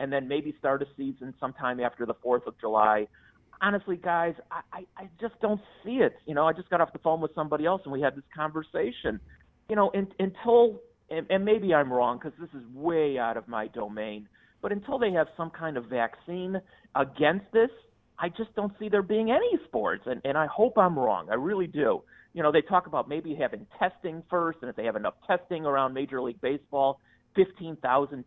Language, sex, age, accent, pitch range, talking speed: English, male, 40-59, American, 135-190 Hz, 215 wpm